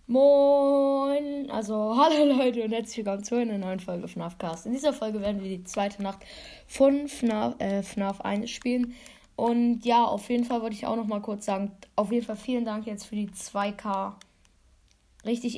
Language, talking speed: German, 190 wpm